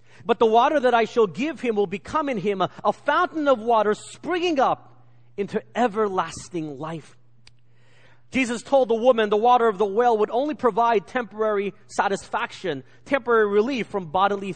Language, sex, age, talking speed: English, male, 30-49, 165 wpm